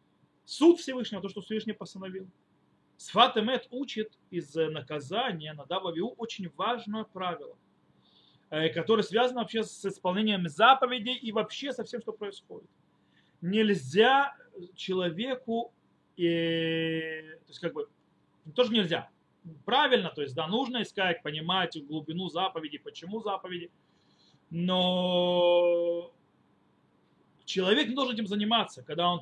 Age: 30-49